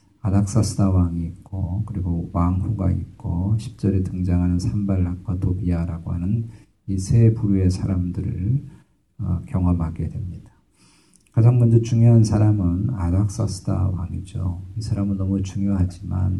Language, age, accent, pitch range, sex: Korean, 50-69, native, 95-110 Hz, male